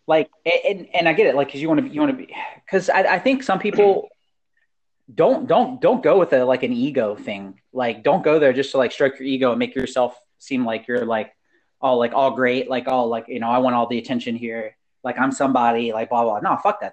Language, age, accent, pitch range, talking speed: English, 30-49, American, 125-190 Hz, 260 wpm